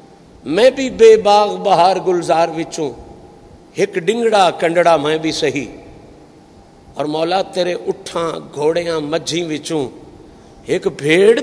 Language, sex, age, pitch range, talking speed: Urdu, male, 50-69, 175-255 Hz, 110 wpm